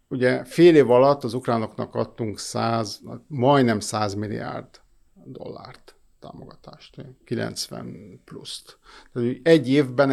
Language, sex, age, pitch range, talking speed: Hungarian, male, 50-69, 115-140 Hz, 105 wpm